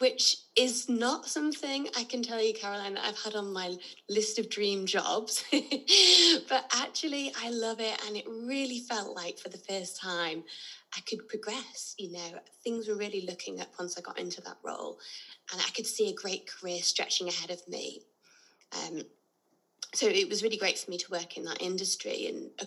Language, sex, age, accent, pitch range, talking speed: English, female, 20-39, British, 180-270 Hz, 195 wpm